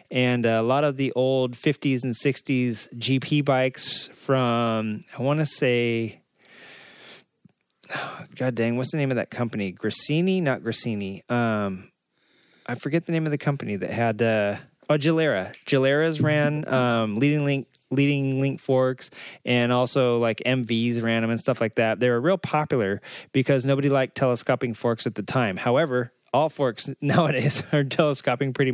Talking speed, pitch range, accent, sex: 160 wpm, 115-140 Hz, American, male